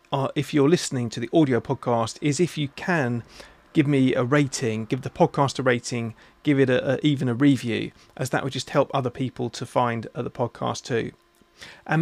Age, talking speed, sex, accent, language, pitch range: 30-49, 210 wpm, male, British, English, 125-145 Hz